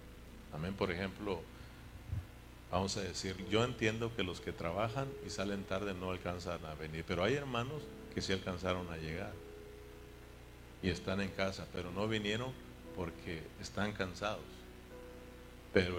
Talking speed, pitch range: 145 wpm, 85-110 Hz